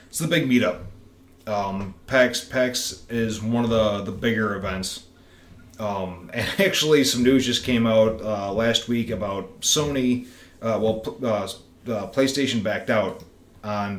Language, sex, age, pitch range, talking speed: English, male, 30-49, 100-125 Hz, 150 wpm